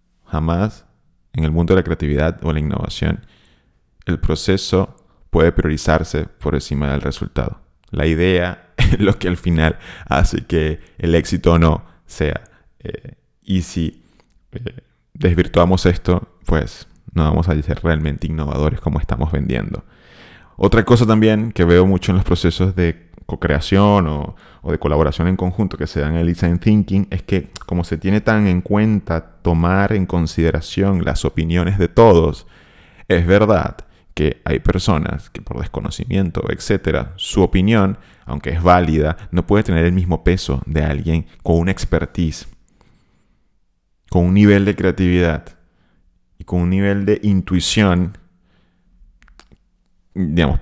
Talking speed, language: 145 wpm, Spanish